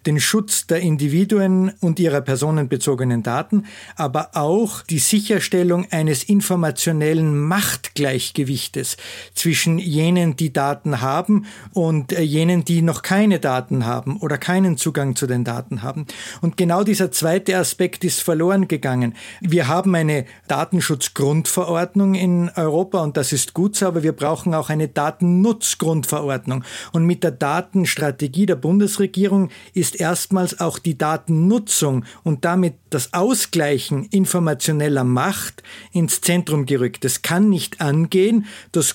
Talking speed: 130 wpm